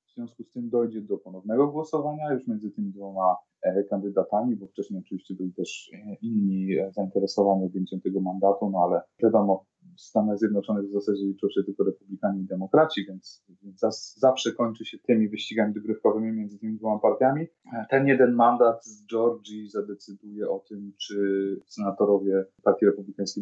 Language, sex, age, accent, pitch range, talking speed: Polish, male, 20-39, native, 100-120 Hz, 165 wpm